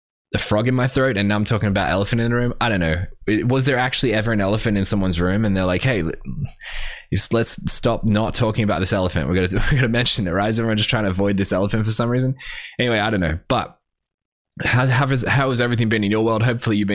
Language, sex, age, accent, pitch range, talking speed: English, male, 10-29, Australian, 95-120 Hz, 260 wpm